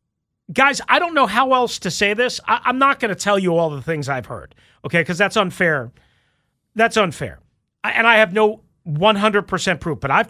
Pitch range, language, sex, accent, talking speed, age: 155-235 Hz, English, male, American, 200 wpm, 40-59